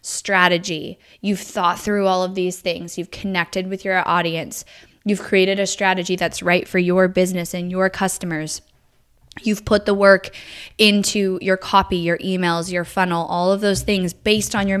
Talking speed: 175 wpm